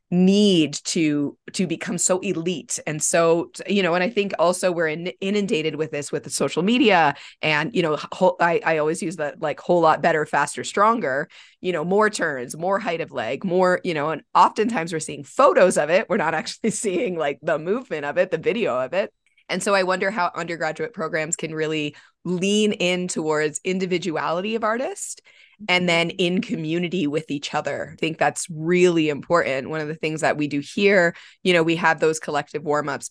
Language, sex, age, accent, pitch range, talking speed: English, female, 20-39, American, 155-195 Hz, 205 wpm